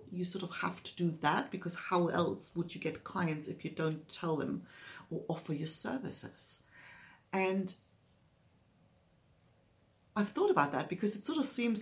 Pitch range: 165-205 Hz